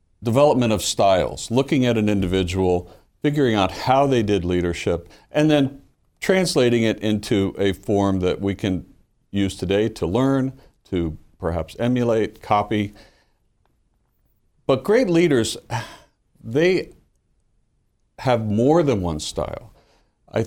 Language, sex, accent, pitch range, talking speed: English, male, American, 95-125 Hz, 120 wpm